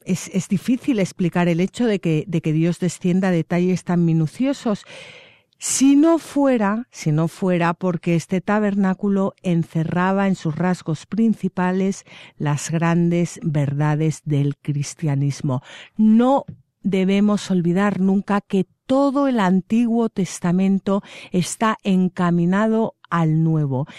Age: 50-69